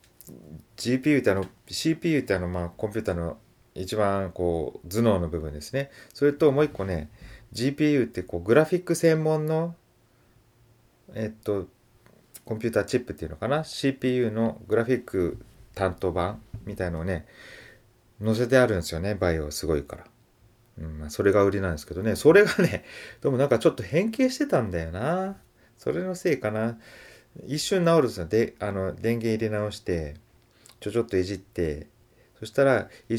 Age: 30-49